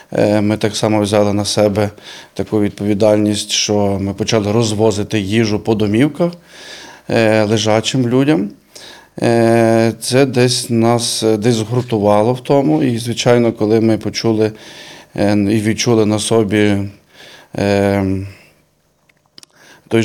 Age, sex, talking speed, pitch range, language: 20-39, male, 100 wpm, 105-115 Hz, Ukrainian